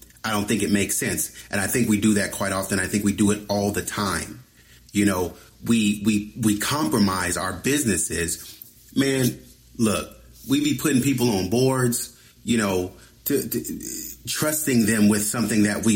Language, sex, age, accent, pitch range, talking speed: English, male, 30-49, American, 100-130 Hz, 180 wpm